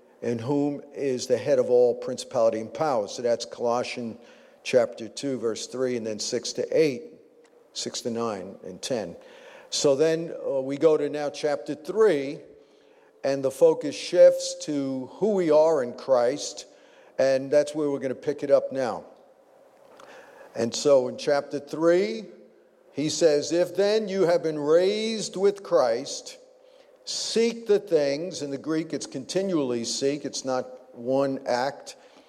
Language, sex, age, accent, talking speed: English, male, 50-69, American, 155 wpm